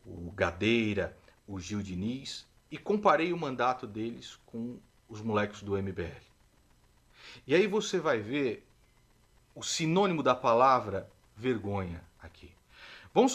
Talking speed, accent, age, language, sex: 120 wpm, Brazilian, 40-59, Portuguese, male